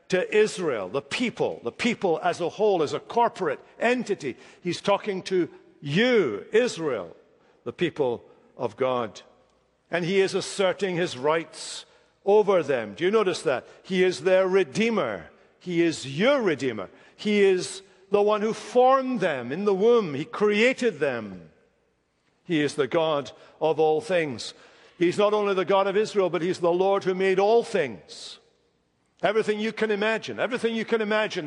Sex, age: male, 60-79